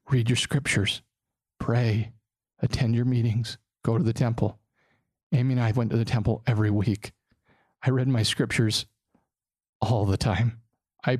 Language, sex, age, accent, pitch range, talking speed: English, male, 40-59, American, 105-125 Hz, 150 wpm